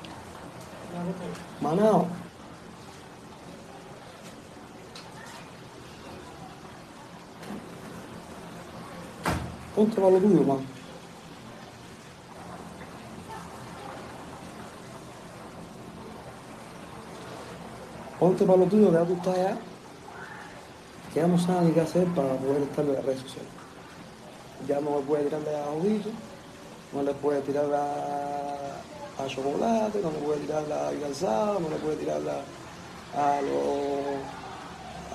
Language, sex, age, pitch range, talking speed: Spanish, male, 60-79, 140-185 Hz, 95 wpm